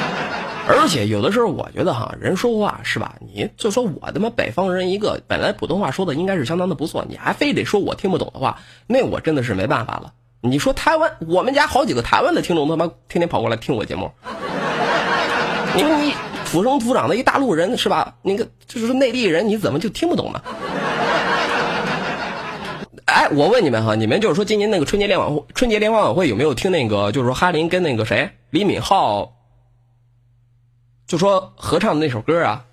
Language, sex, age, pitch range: Chinese, male, 20-39, 120-165 Hz